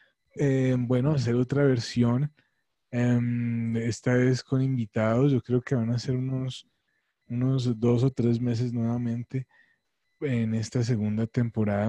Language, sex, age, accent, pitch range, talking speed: Spanish, male, 20-39, Colombian, 110-125 Hz, 135 wpm